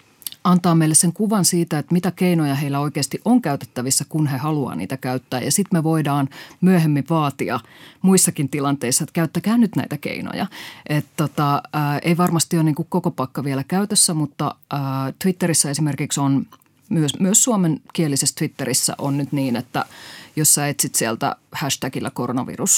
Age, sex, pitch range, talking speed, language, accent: 30-49, female, 140-170 Hz, 160 wpm, Finnish, native